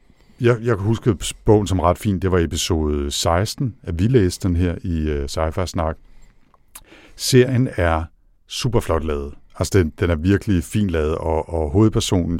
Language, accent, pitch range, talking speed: Danish, native, 80-95 Hz, 175 wpm